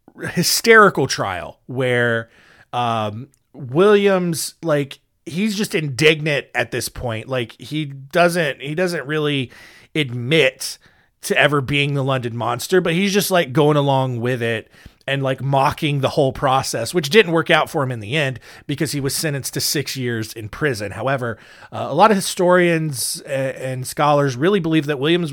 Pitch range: 125-170 Hz